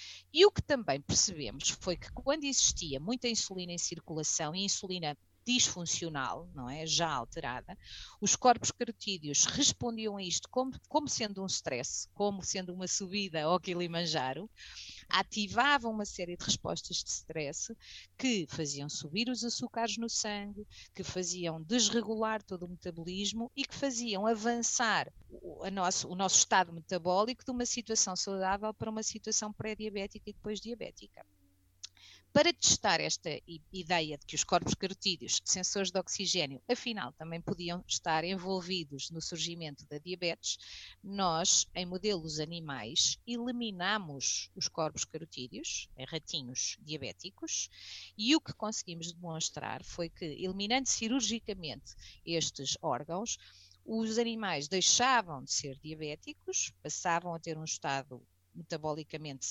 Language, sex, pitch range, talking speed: Portuguese, female, 155-215 Hz, 135 wpm